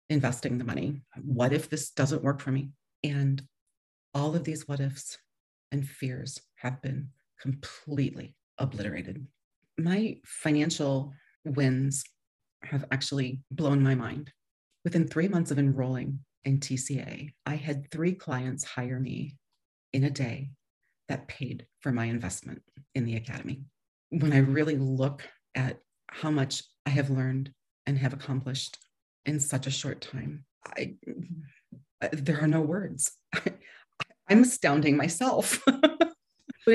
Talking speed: 135 wpm